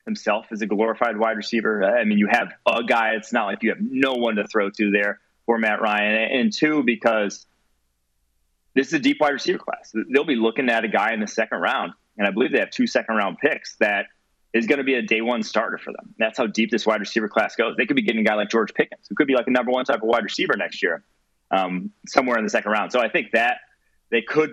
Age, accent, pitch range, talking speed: 30-49, American, 105-130 Hz, 265 wpm